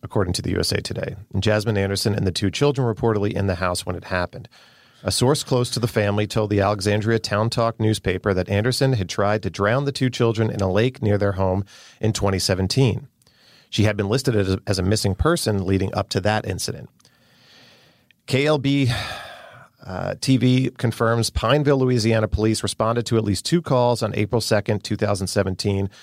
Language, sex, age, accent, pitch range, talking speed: English, male, 40-59, American, 100-120 Hz, 180 wpm